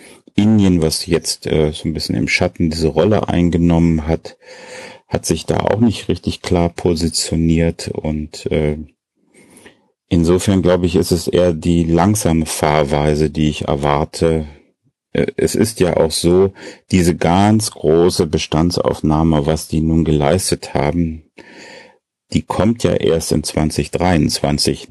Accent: German